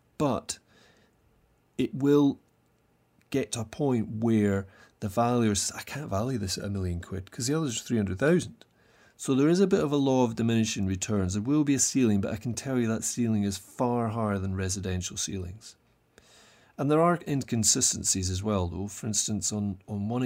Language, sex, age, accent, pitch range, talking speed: English, male, 30-49, British, 100-135 Hz, 195 wpm